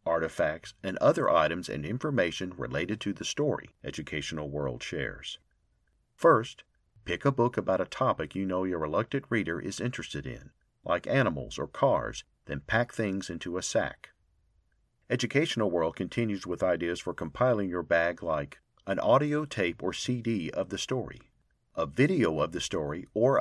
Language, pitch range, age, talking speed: English, 85-120 Hz, 50-69, 160 wpm